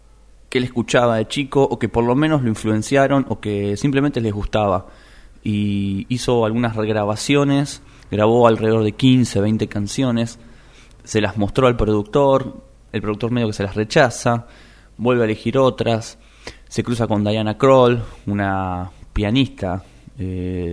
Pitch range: 105-125 Hz